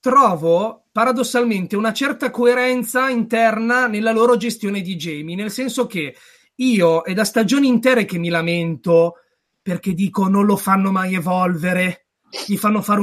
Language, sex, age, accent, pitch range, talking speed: Italian, male, 30-49, native, 185-230 Hz, 145 wpm